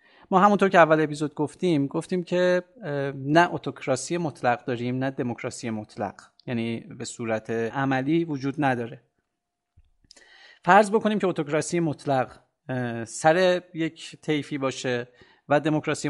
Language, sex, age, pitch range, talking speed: Persian, male, 40-59, 125-155 Hz, 120 wpm